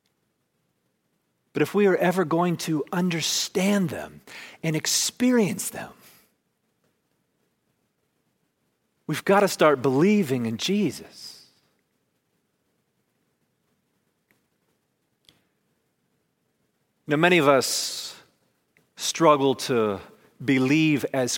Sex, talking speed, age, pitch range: male, 75 wpm, 40-59, 155-210 Hz